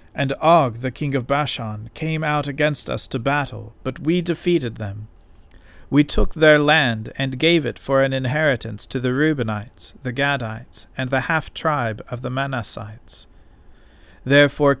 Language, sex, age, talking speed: English, male, 40-59, 160 wpm